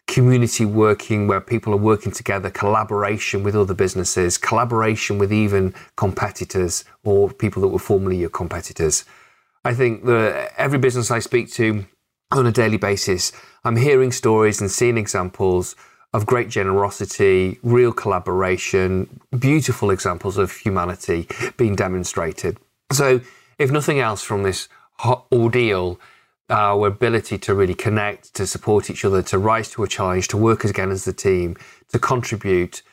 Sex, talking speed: male, 150 wpm